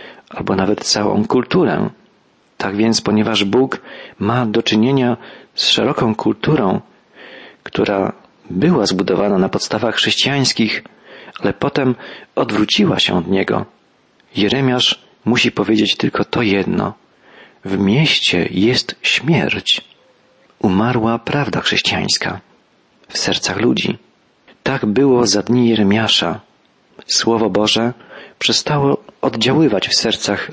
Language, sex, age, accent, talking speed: Polish, male, 40-59, native, 105 wpm